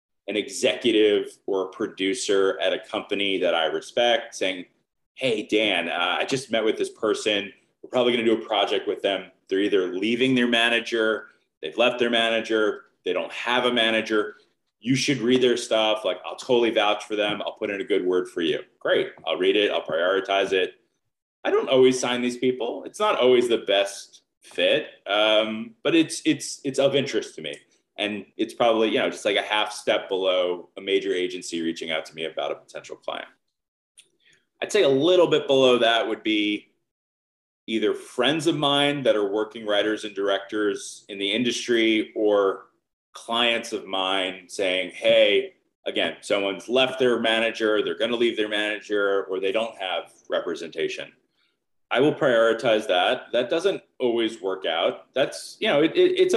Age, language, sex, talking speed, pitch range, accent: 30-49, English, male, 180 wpm, 105-170 Hz, American